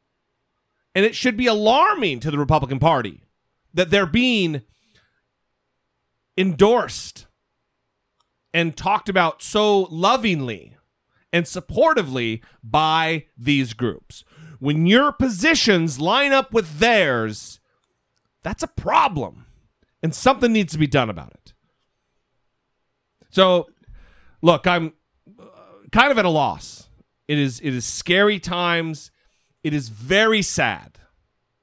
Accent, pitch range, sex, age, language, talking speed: American, 145-200 Hz, male, 40-59, English, 110 wpm